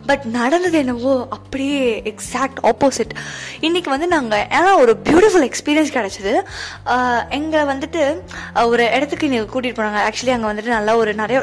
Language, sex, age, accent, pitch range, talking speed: Tamil, female, 20-39, native, 225-285 Hz, 140 wpm